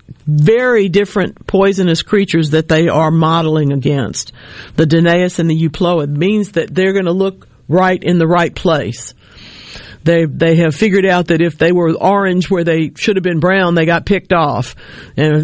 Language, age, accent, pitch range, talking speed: English, 50-69, American, 155-185 Hz, 180 wpm